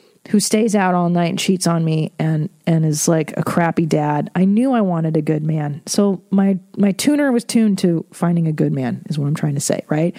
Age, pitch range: 30-49, 175-225 Hz